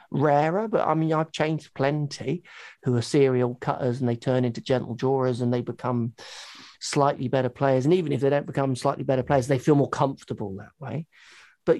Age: 40-59